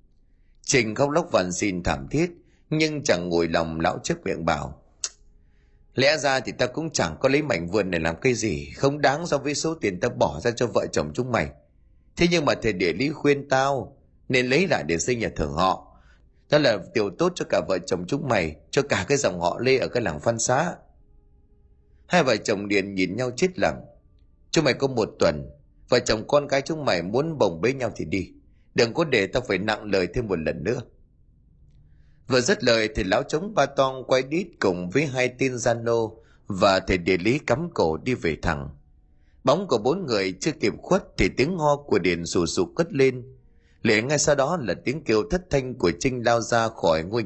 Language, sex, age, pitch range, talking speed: Vietnamese, male, 20-39, 85-145 Hz, 220 wpm